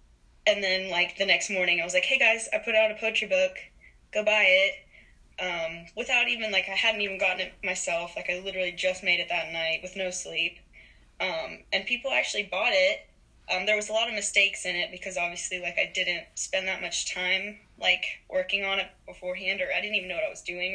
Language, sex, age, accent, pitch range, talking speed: English, female, 10-29, American, 180-210 Hz, 230 wpm